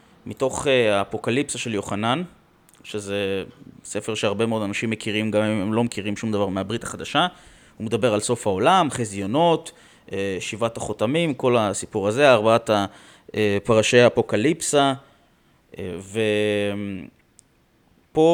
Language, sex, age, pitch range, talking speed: Hebrew, male, 20-39, 100-135 Hz, 120 wpm